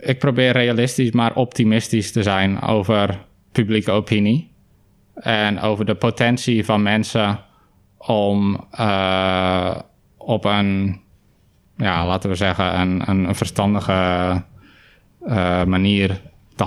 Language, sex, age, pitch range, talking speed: Dutch, male, 20-39, 100-115 Hz, 110 wpm